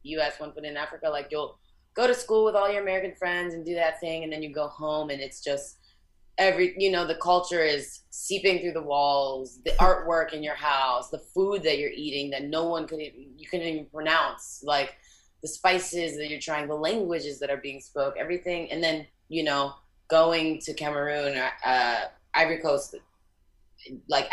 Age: 20-39